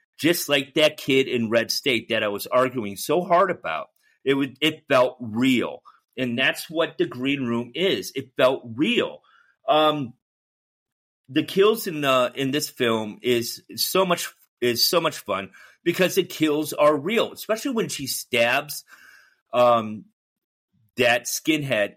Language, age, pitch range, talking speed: English, 40-59, 120-160 Hz, 155 wpm